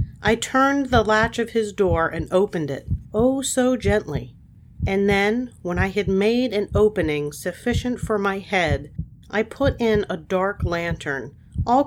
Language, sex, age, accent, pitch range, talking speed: English, female, 40-59, American, 175-245 Hz, 160 wpm